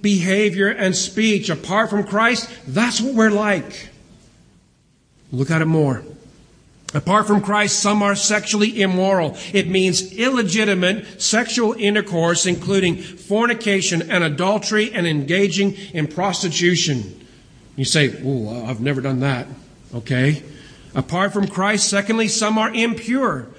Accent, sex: American, male